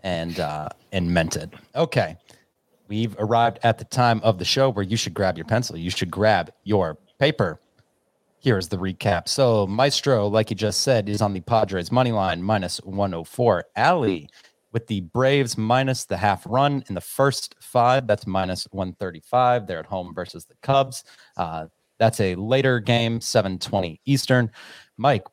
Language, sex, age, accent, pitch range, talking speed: English, male, 30-49, American, 95-120 Hz, 170 wpm